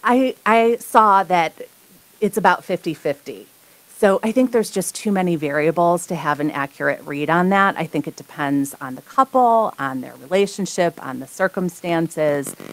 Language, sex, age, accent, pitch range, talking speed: English, female, 40-59, American, 150-195 Hz, 165 wpm